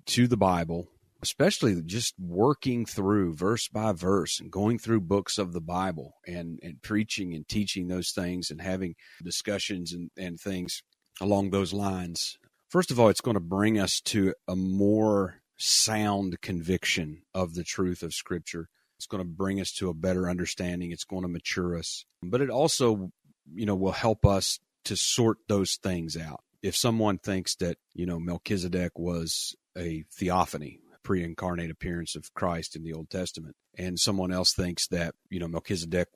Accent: American